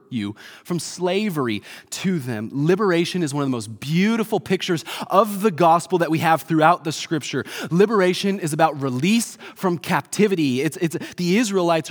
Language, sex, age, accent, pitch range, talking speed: English, male, 30-49, American, 125-180 Hz, 150 wpm